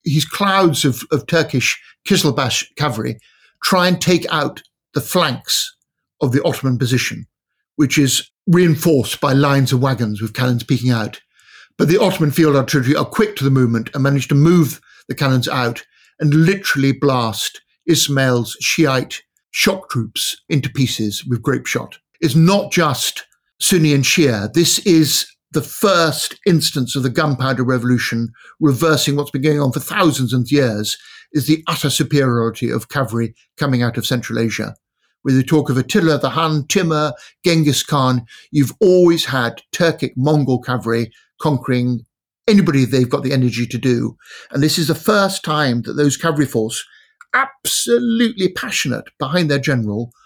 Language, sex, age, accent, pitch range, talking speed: English, male, 50-69, British, 125-160 Hz, 155 wpm